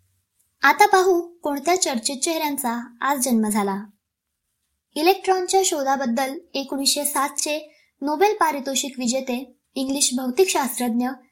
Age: 20-39